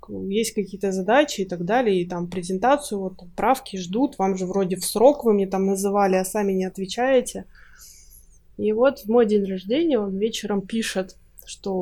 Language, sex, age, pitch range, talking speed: Russian, female, 20-39, 195-240 Hz, 180 wpm